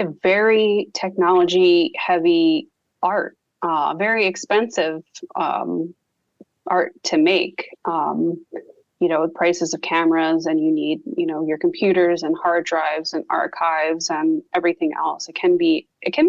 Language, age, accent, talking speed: English, 20-39, American, 140 wpm